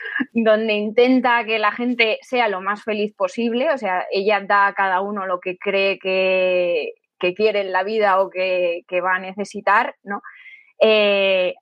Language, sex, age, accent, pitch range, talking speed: Spanish, female, 20-39, Spanish, 190-240 Hz, 170 wpm